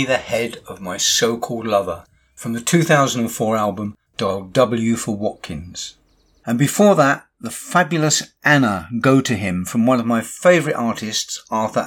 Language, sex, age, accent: English, male, 50-69, British